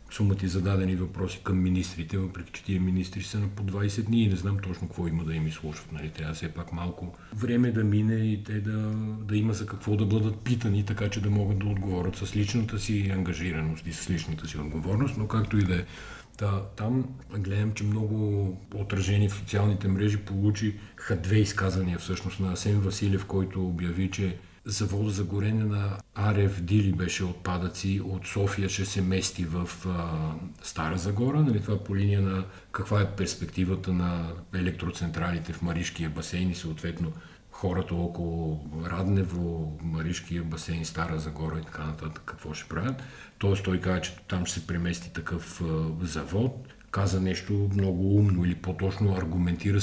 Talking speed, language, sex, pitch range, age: 175 wpm, Bulgarian, male, 85-100 Hz, 40-59